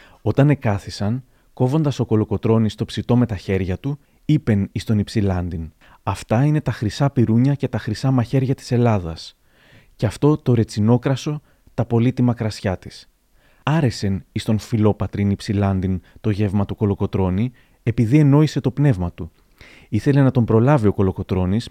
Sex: male